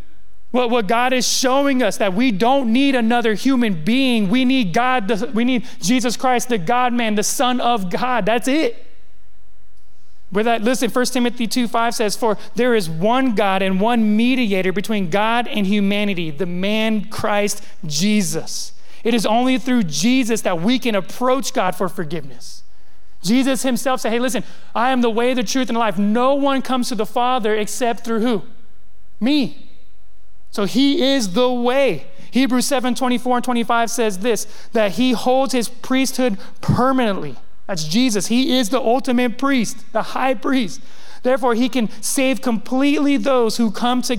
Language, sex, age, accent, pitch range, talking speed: English, male, 30-49, American, 215-255 Hz, 165 wpm